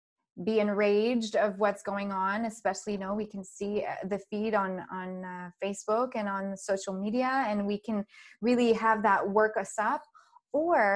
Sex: female